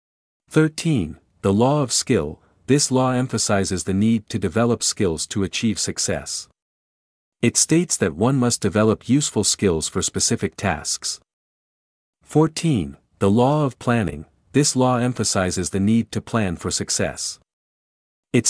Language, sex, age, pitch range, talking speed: English, male, 50-69, 95-125 Hz, 135 wpm